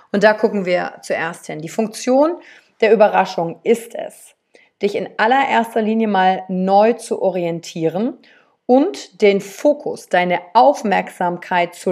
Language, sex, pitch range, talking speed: German, female, 200-260 Hz, 130 wpm